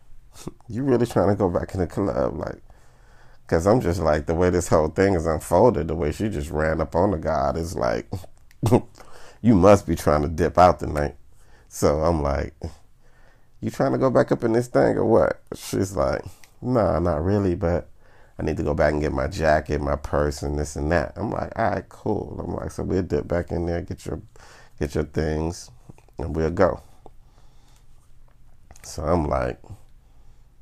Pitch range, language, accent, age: 75-95 Hz, English, American, 40-59